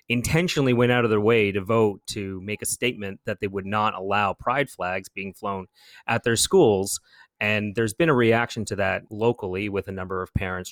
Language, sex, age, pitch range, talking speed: English, male, 30-49, 95-110 Hz, 205 wpm